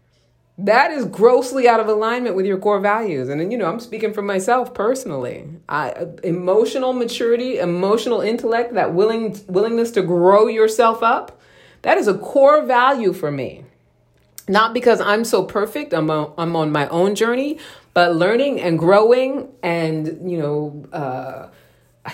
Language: English